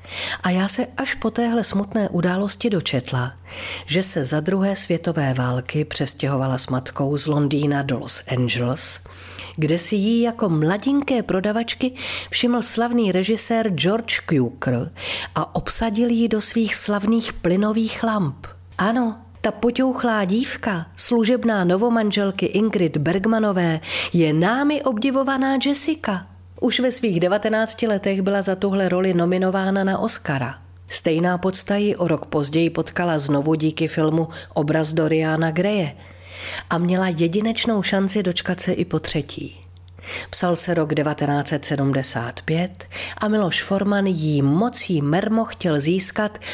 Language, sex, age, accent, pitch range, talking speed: Czech, female, 40-59, native, 145-210 Hz, 130 wpm